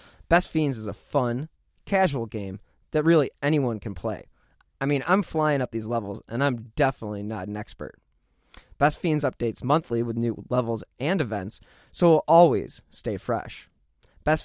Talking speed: 170 wpm